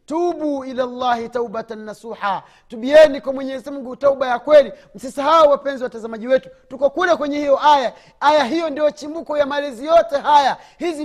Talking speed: 165 wpm